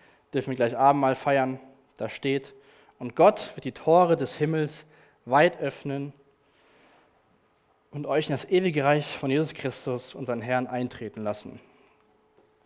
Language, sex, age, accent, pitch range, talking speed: German, male, 20-39, German, 125-155 Hz, 140 wpm